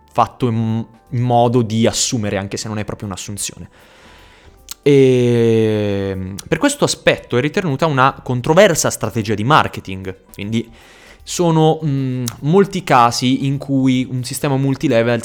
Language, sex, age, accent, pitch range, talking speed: Italian, male, 20-39, native, 105-130 Hz, 120 wpm